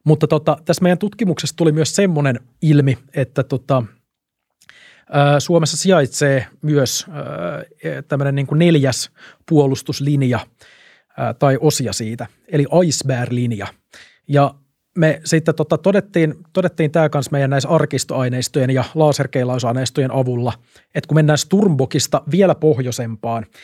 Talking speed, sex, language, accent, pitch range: 120 wpm, male, Finnish, native, 135-155 Hz